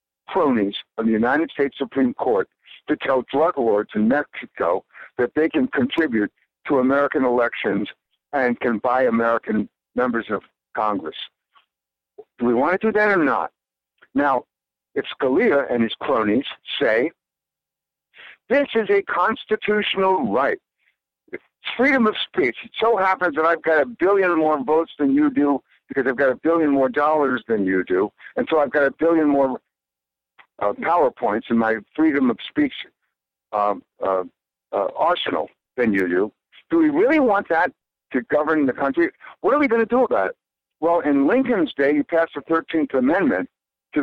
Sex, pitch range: male, 120-195 Hz